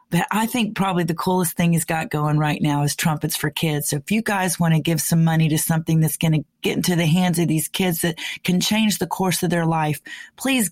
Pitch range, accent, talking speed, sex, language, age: 160-185 Hz, American, 260 wpm, female, English, 40-59